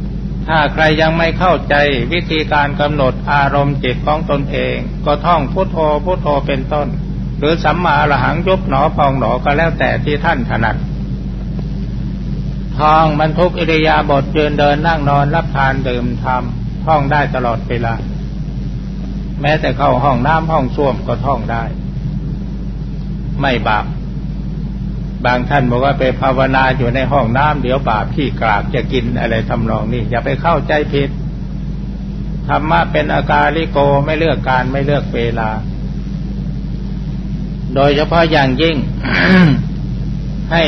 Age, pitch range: 60-79, 135-160 Hz